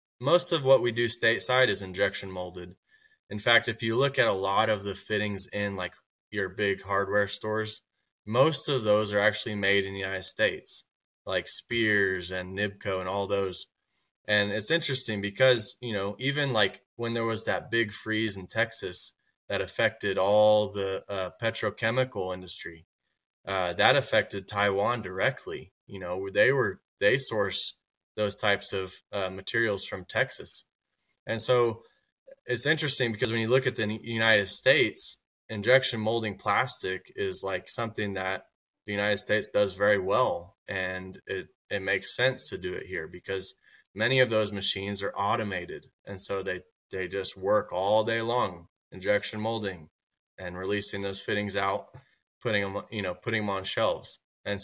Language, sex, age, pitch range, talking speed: English, male, 20-39, 95-115 Hz, 165 wpm